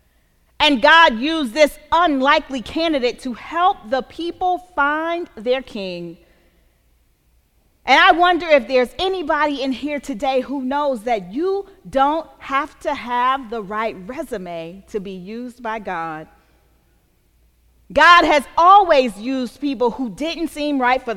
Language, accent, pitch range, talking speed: English, American, 235-320 Hz, 135 wpm